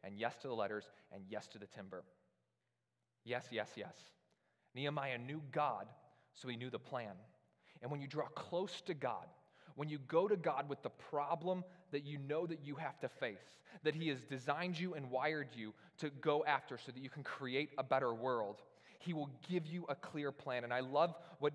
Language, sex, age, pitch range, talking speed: English, male, 20-39, 140-185 Hz, 205 wpm